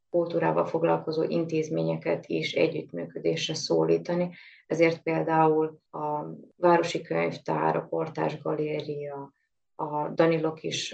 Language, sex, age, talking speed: Hungarian, female, 20-39, 90 wpm